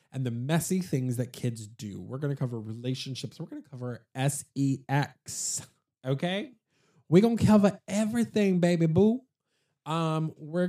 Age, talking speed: 20-39, 150 wpm